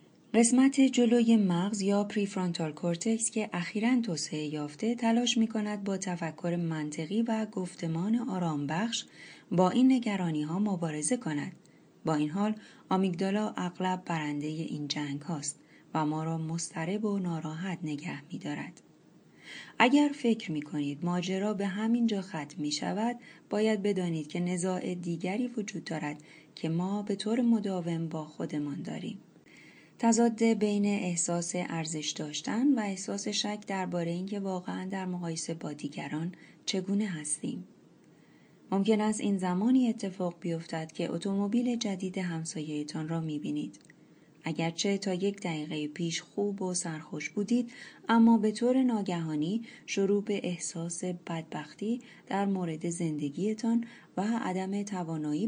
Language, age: Persian, 30-49